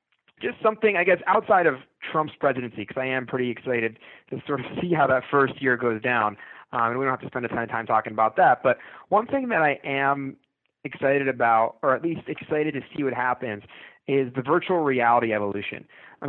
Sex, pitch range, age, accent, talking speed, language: male, 125-155 Hz, 20-39, American, 215 wpm, English